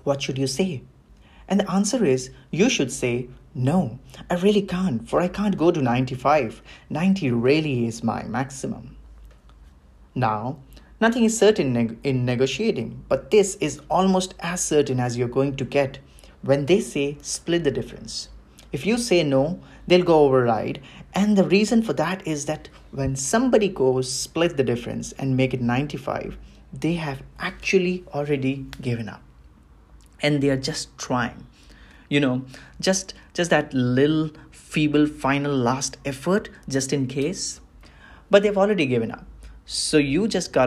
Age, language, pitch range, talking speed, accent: 30-49, English, 125-175 Hz, 155 wpm, Indian